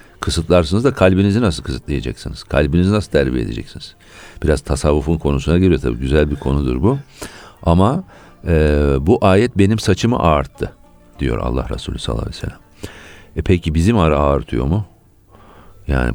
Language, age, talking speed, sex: Turkish, 50-69, 140 wpm, male